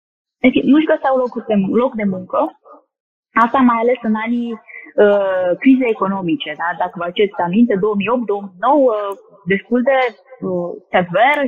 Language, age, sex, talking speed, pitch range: Romanian, 20-39, female, 125 wpm, 205-300 Hz